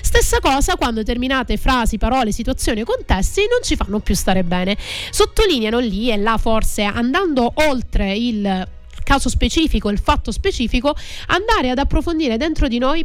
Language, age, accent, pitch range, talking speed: Italian, 30-49, native, 210-270 Hz, 155 wpm